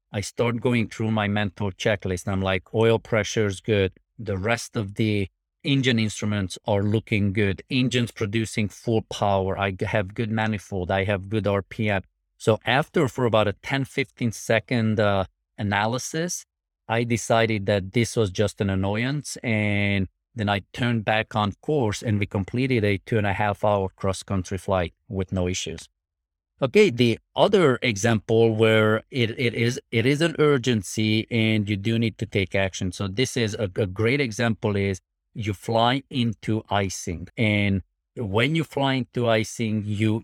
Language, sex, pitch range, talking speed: English, male, 100-115 Hz, 165 wpm